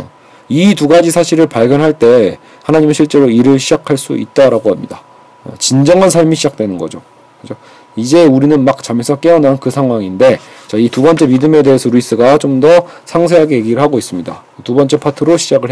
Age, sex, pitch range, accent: 40-59, male, 130-175 Hz, native